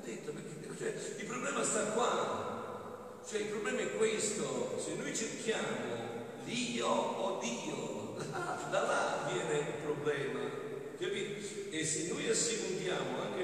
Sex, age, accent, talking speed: male, 50-69, native, 120 wpm